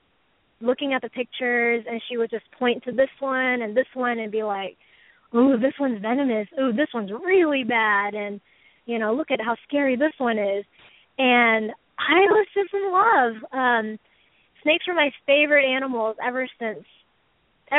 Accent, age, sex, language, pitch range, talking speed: American, 20-39, female, English, 225-275 Hz, 170 wpm